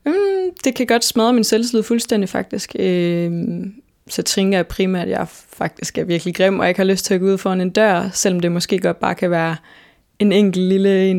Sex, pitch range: female, 175-200 Hz